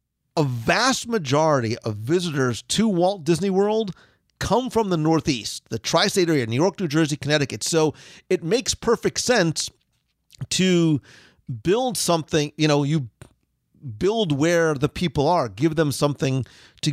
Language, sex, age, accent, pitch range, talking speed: English, male, 40-59, American, 125-160 Hz, 145 wpm